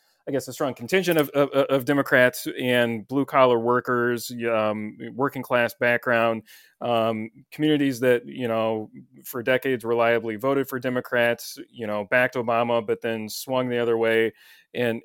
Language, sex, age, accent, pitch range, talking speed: English, male, 30-49, American, 115-130 Hz, 155 wpm